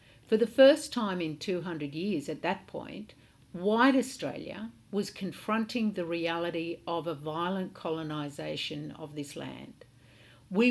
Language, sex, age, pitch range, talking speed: English, female, 60-79, 160-215 Hz, 135 wpm